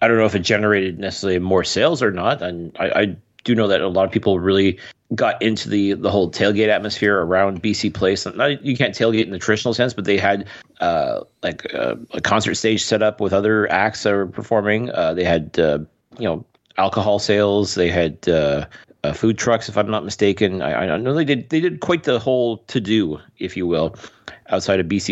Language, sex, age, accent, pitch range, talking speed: English, male, 30-49, American, 95-120 Hz, 220 wpm